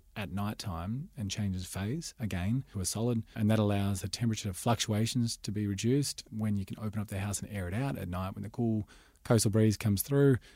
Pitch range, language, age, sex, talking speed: 95-110 Hz, English, 30-49, male, 220 wpm